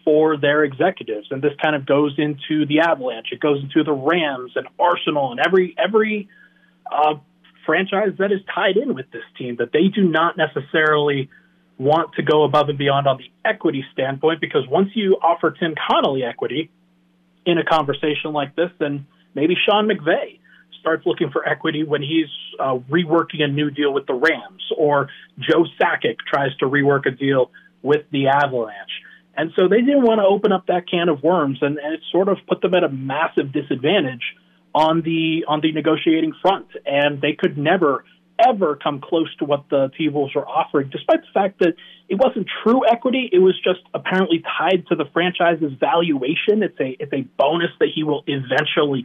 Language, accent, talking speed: English, American, 190 wpm